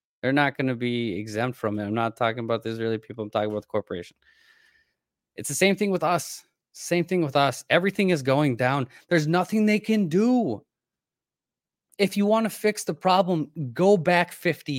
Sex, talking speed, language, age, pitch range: male, 200 wpm, English, 20-39, 120-175 Hz